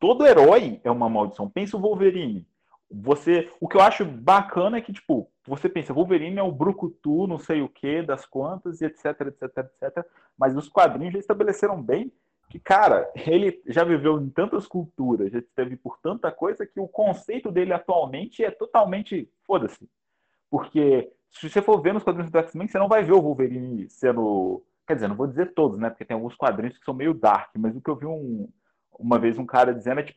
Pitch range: 130-195 Hz